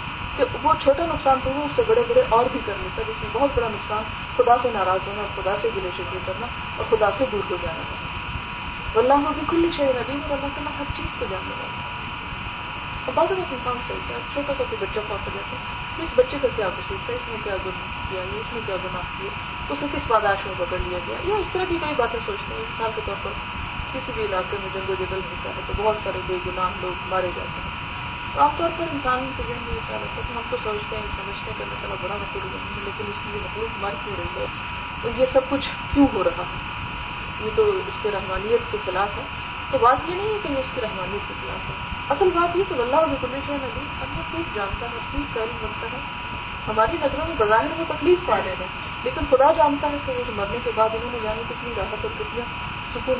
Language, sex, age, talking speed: Urdu, female, 20-39, 225 wpm